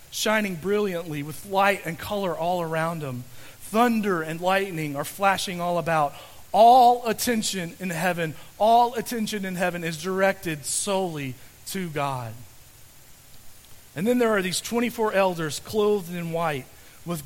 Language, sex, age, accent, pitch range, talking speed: English, male, 40-59, American, 145-195 Hz, 140 wpm